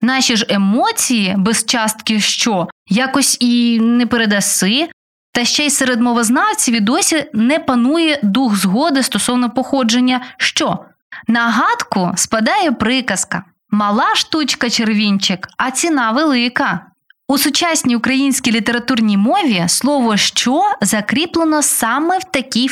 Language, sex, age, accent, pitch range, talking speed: Ukrainian, female, 20-39, native, 210-285 Hz, 115 wpm